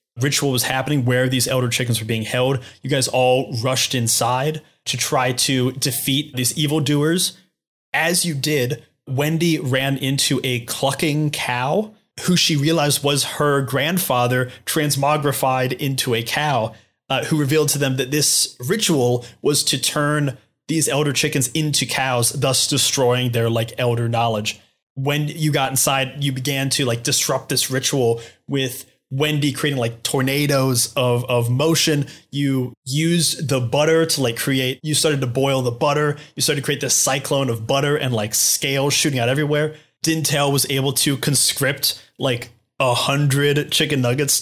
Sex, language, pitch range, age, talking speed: male, English, 125-150 Hz, 20-39, 160 wpm